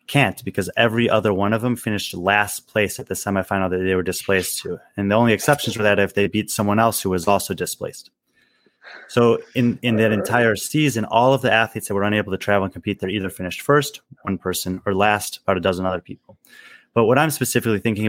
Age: 30-49